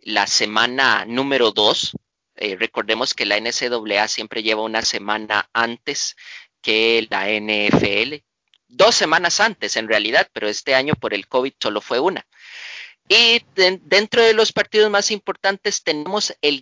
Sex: male